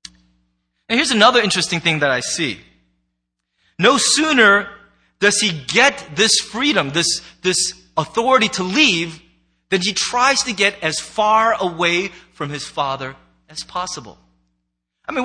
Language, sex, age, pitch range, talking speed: English, male, 30-49, 180-250 Hz, 140 wpm